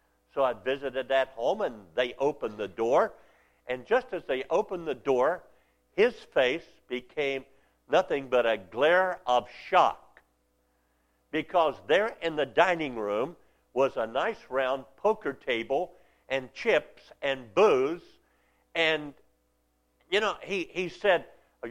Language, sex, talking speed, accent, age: English, male, 135 wpm, American, 50-69